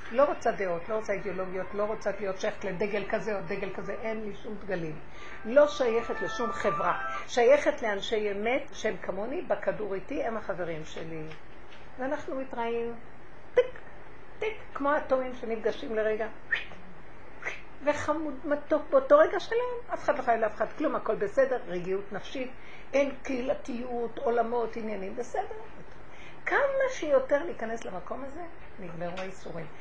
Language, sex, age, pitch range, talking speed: Hebrew, female, 60-79, 210-295 Hz, 135 wpm